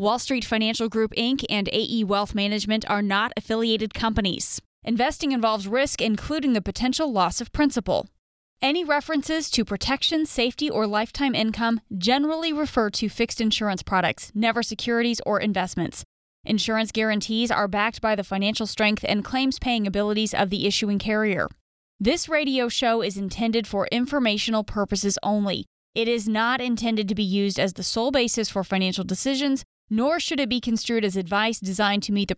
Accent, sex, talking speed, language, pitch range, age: American, female, 165 wpm, English, 205-245 Hz, 20-39